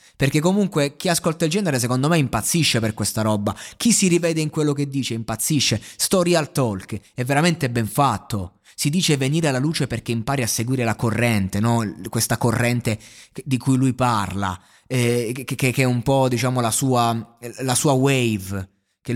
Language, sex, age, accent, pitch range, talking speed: Italian, male, 20-39, native, 105-140 Hz, 185 wpm